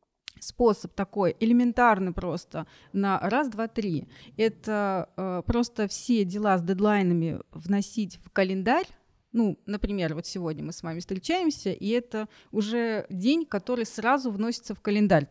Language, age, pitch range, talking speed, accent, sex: Russian, 30-49, 190-240 Hz, 135 wpm, native, female